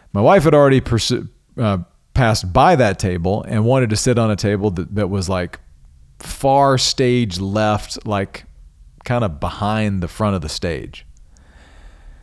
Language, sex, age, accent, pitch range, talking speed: English, male, 40-59, American, 90-120 Hz, 155 wpm